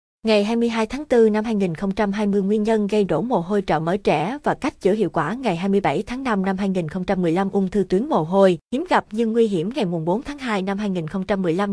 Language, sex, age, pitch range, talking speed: Vietnamese, female, 20-39, 180-220 Hz, 215 wpm